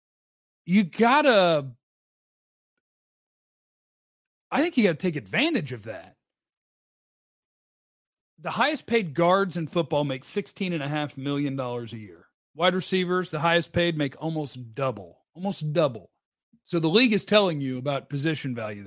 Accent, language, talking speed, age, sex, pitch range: American, English, 135 wpm, 40-59, male, 130-175 Hz